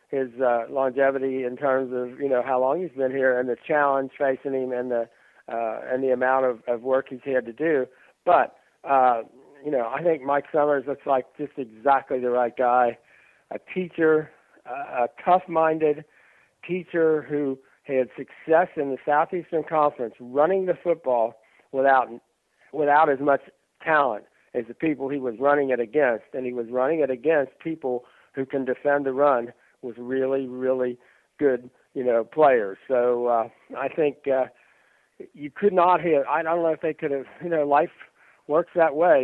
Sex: male